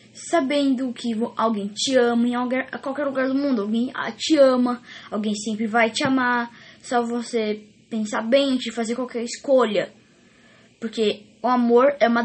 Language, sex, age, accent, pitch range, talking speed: English, female, 10-29, Brazilian, 220-265 Hz, 150 wpm